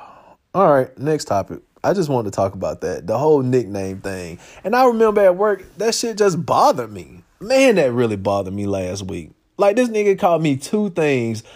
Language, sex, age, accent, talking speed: English, male, 30-49, American, 195 wpm